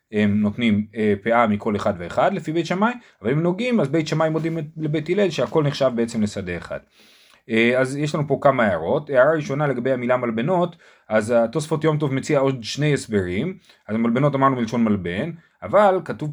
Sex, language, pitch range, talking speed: male, Hebrew, 120-160 Hz, 180 wpm